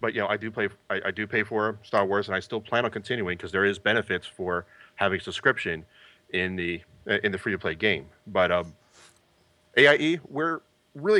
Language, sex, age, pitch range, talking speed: English, male, 30-49, 100-150 Hz, 200 wpm